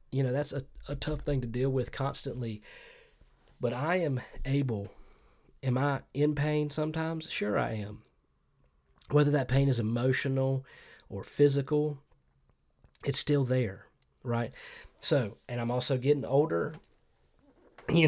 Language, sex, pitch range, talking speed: English, male, 110-140 Hz, 135 wpm